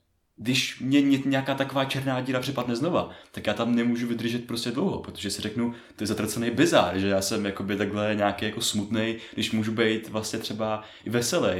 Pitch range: 95-115 Hz